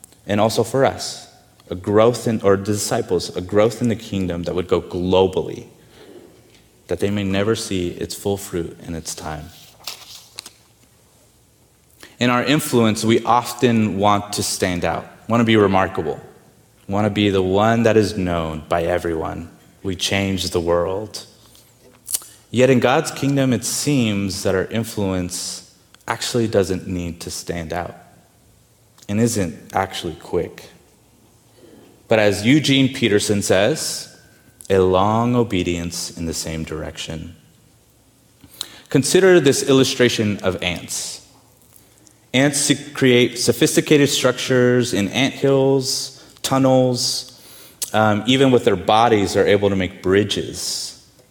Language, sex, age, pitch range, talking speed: English, male, 30-49, 95-125 Hz, 130 wpm